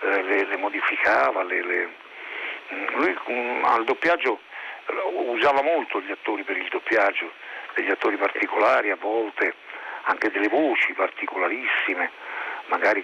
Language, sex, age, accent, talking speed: Italian, male, 50-69, native, 120 wpm